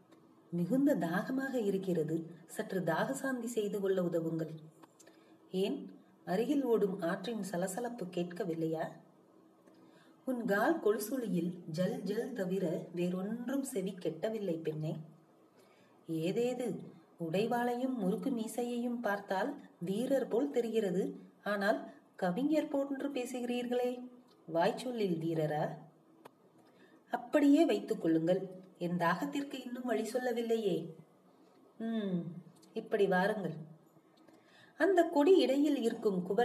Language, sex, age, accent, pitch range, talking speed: Tamil, female, 30-49, native, 175-240 Hz, 60 wpm